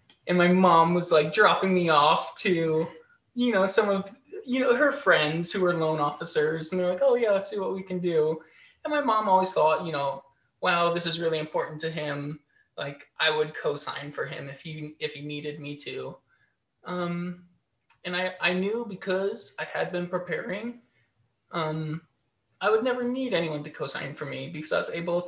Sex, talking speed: male, 195 wpm